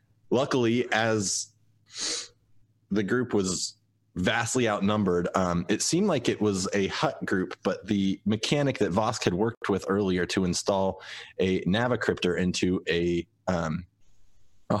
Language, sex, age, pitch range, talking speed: English, male, 30-49, 95-110 Hz, 135 wpm